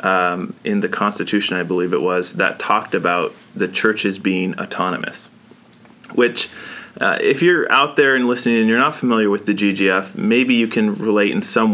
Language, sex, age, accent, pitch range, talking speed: English, male, 30-49, American, 95-115 Hz, 185 wpm